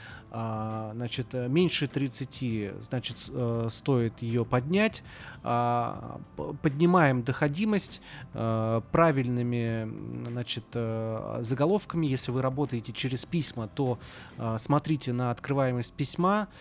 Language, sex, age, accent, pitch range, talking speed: Russian, male, 30-49, native, 115-150 Hz, 80 wpm